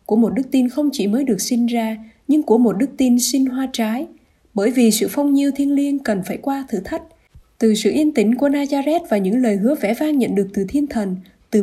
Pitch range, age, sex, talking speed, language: 210-275 Hz, 20-39, female, 250 wpm, Vietnamese